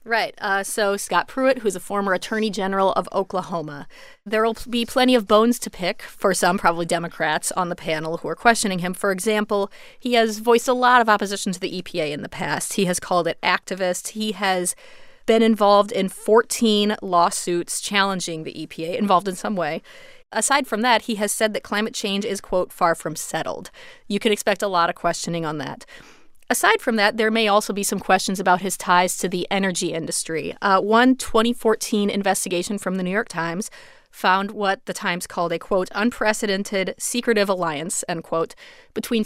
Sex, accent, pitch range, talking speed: female, American, 185-225 Hz, 195 wpm